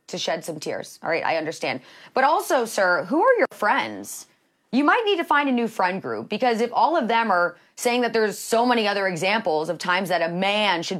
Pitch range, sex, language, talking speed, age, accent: 185-260 Hz, female, English, 235 wpm, 30-49, American